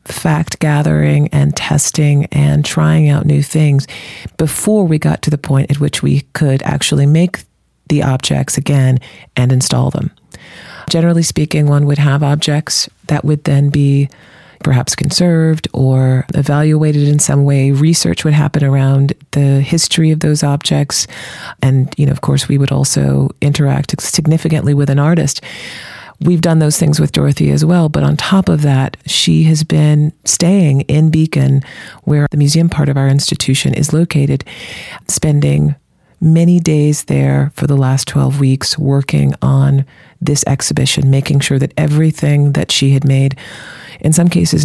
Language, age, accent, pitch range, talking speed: English, 40-59, American, 135-155 Hz, 160 wpm